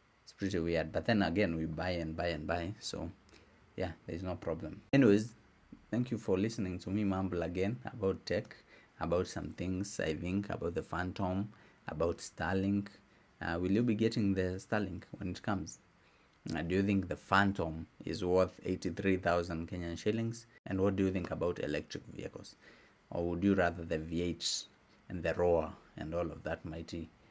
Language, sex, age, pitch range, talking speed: English, male, 30-49, 85-100 Hz, 175 wpm